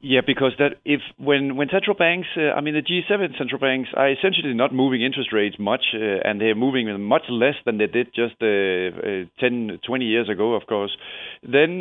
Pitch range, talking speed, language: 110-135 Hz, 210 wpm, English